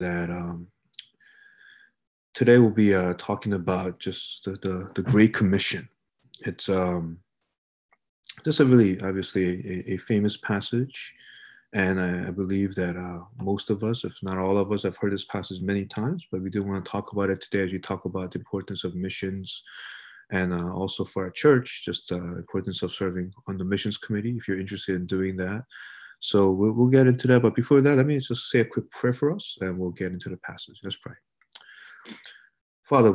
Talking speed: 195 wpm